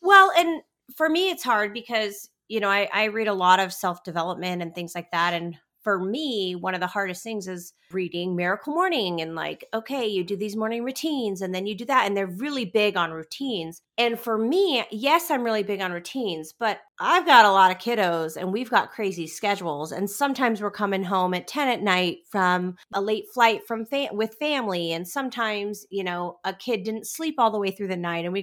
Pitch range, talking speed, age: 185-235 Hz, 225 wpm, 30-49